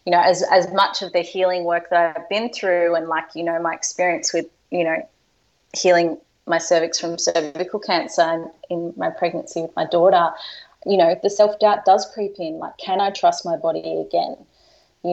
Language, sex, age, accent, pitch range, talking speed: English, female, 20-39, Australian, 165-185 Hz, 200 wpm